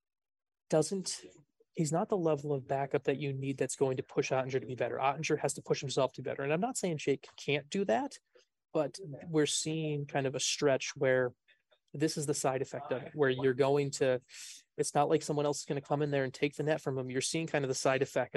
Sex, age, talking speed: male, 20-39, 250 wpm